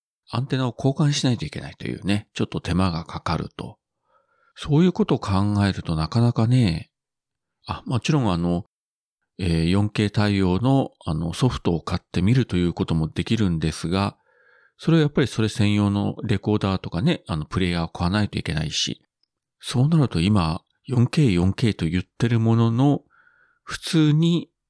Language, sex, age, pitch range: Japanese, male, 40-59, 85-130 Hz